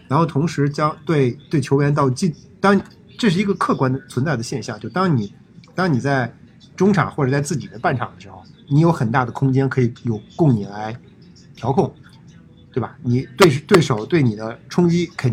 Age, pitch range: 50-69, 125-155 Hz